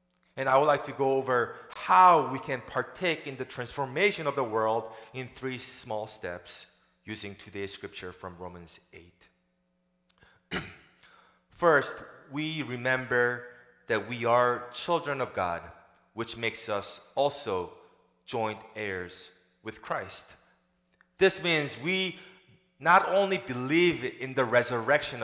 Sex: male